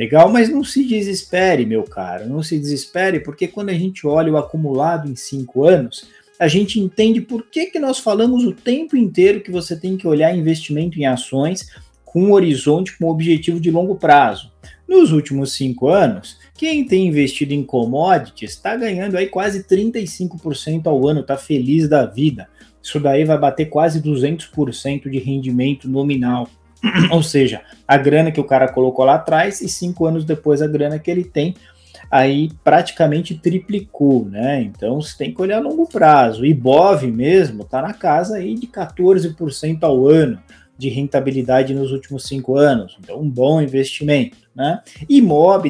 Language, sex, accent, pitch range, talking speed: Portuguese, male, Brazilian, 135-185 Hz, 170 wpm